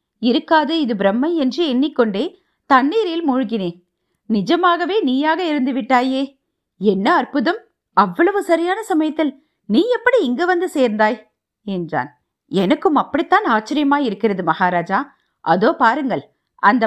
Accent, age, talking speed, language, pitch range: native, 50-69, 100 wpm, Tamil, 205-325 Hz